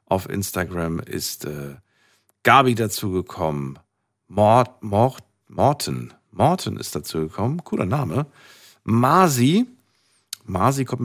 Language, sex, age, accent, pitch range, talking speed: German, male, 50-69, German, 95-125 Hz, 90 wpm